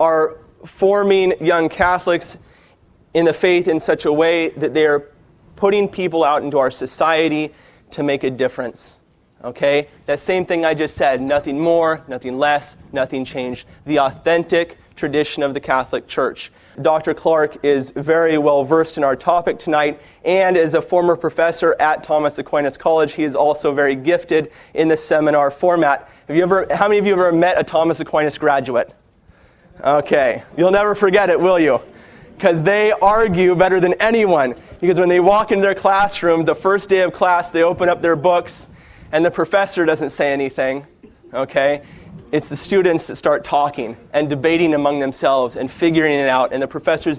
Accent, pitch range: American, 145-180 Hz